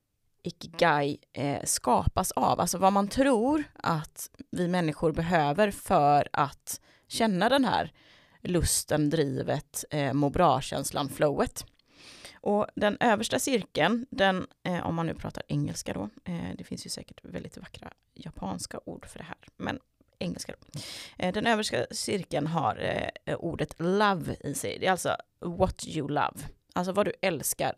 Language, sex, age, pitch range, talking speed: Swedish, female, 30-49, 155-215 Hz, 150 wpm